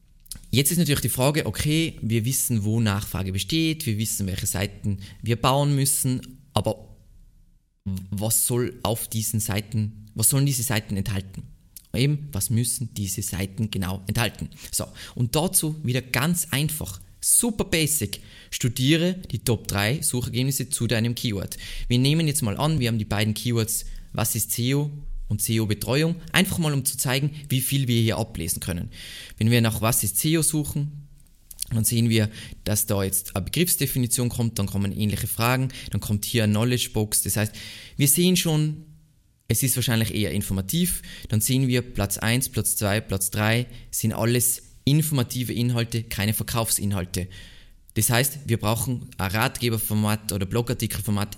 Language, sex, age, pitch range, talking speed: German, male, 20-39, 105-130 Hz, 160 wpm